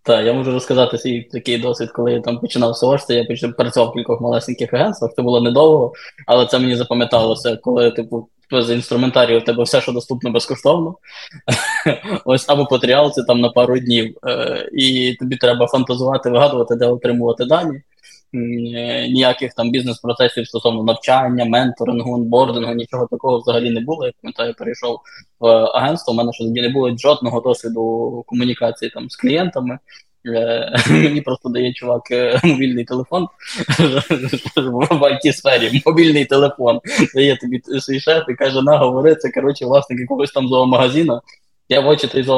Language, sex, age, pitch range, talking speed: Ukrainian, male, 20-39, 120-140 Hz, 155 wpm